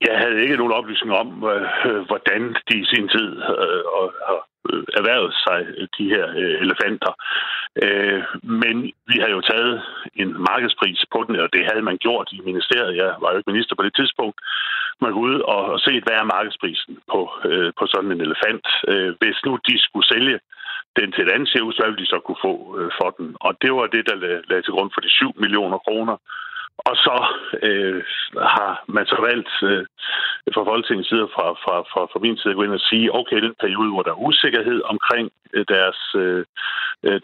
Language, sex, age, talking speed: Danish, male, 60-79, 185 wpm